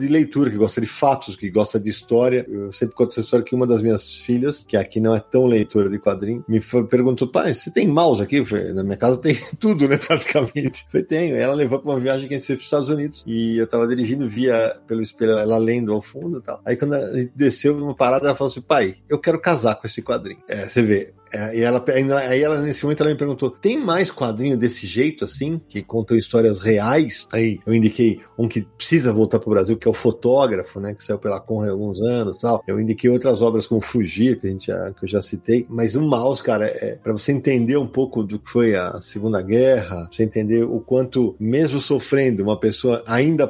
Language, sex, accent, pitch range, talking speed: Portuguese, male, Brazilian, 110-135 Hz, 245 wpm